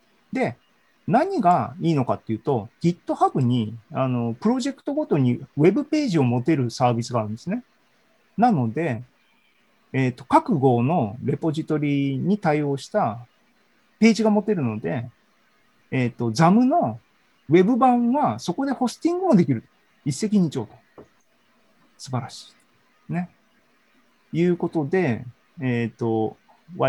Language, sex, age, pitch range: Japanese, male, 40-59, 120-180 Hz